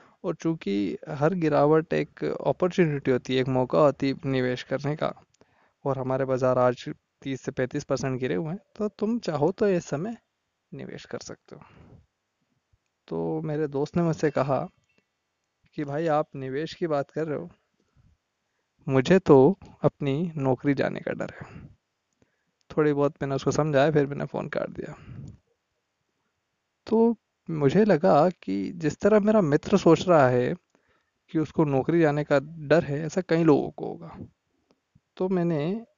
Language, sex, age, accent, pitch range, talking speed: Hindi, male, 20-39, native, 135-185 Hz, 160 wpm